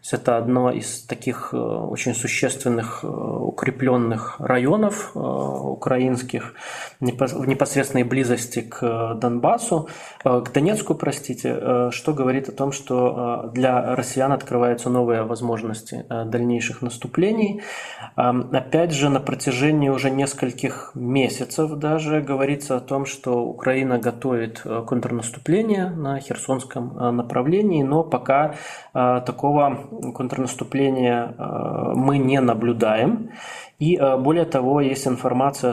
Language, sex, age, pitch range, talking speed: Russian, male, 20-39, 120-140 Hz, 100 wpm